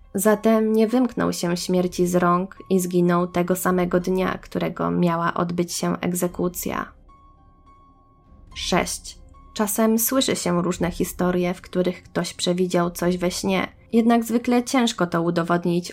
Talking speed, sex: 130 wpm, female